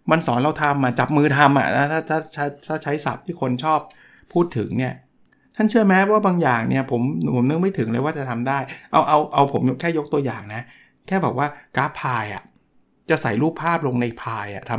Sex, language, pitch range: male, Thai, 130-165 Hz